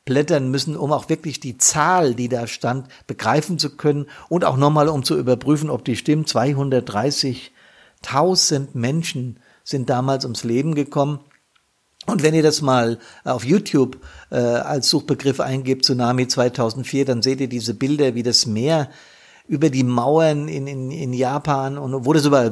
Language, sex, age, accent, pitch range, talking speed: German, male, 50-69, German, 125-150 Hz, 160 wpm